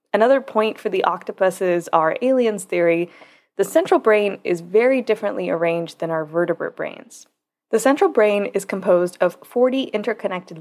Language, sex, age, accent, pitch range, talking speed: English, female, 20-39, American, 170-215 Hz, 155 wpm